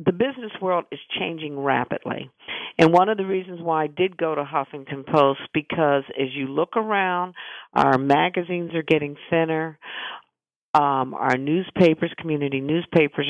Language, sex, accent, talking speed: English, female, American, 150 wpm